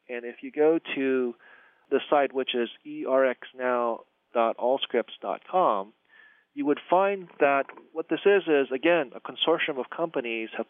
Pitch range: 115-150 Hz